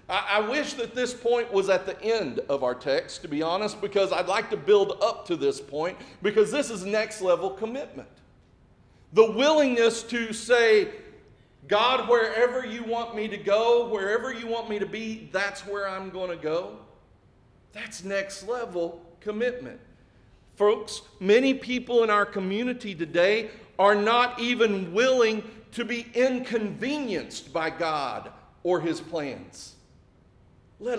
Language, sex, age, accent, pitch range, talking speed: English, male, 50-69, American, 165-240 Hz, 150 wpm